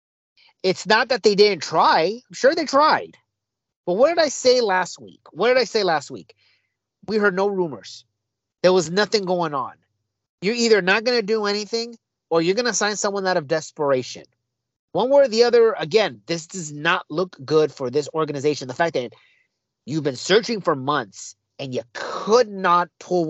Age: 30-49